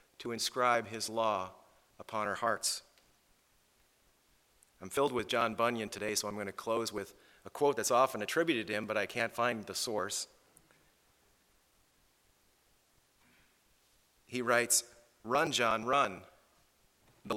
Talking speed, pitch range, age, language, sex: 130 wpm, 95-115 Hz, 40-59, English, male